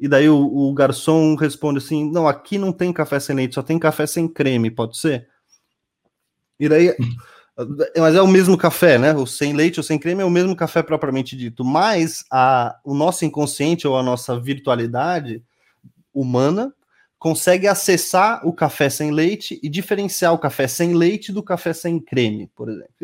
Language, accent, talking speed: Portuguese, Brazilian, 175 wpm